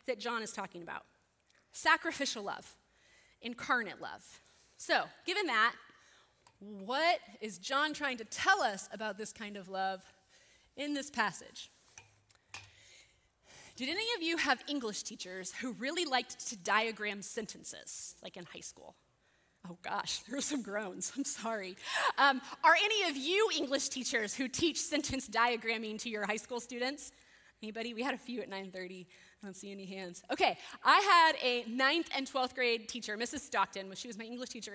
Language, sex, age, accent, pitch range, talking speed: English, female, 20-39, American, 205-270 Hz, 165 wpm